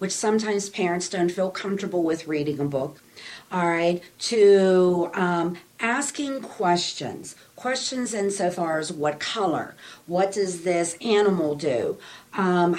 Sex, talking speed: female, 135 wpm